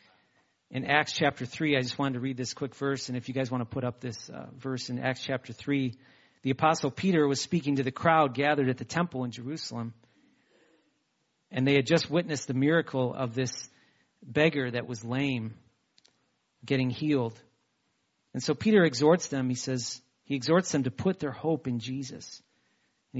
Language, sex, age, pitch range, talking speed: English, male, 40-59, 130-155 Hz, 190 wpm